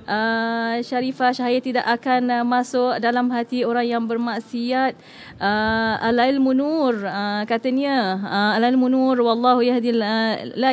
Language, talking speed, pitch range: English, 135 wpm, 230-255 Hz